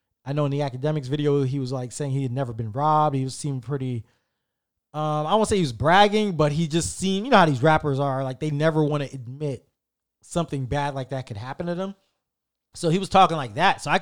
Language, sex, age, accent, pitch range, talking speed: English, male, 20-39, American, 135-160 Hz, 250 wpm